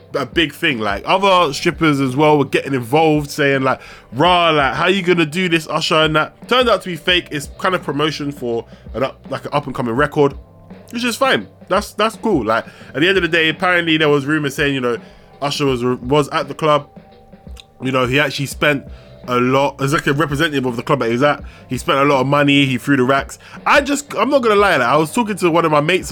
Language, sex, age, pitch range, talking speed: English, male, 20-39, 130-190 Hz, 255 wpm